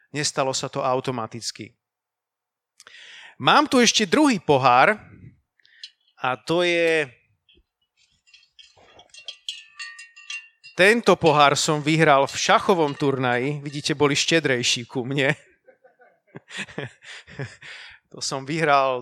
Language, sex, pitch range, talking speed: Slovak, male, 135-170 Hz, 85 wpm